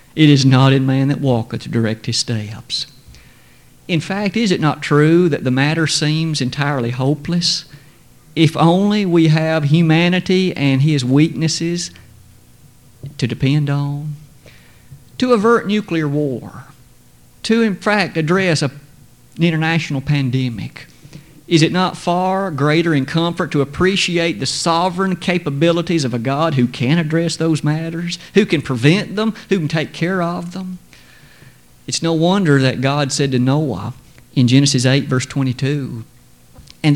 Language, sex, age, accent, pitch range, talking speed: English, male, 50-69, American, 135-175 Hz, 145 wpm